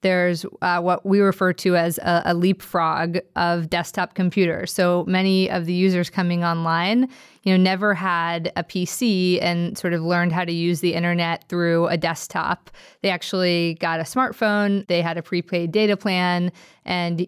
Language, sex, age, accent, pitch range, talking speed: English, female, 20-39, American, 170-190 Hz, 175 wpm